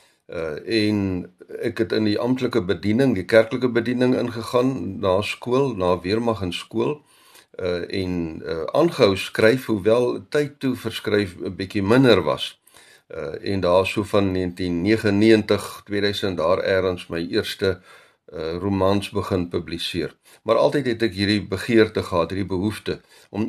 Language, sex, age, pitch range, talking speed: Dutch, male, 50-69, 95-115 Hz, 150 wpm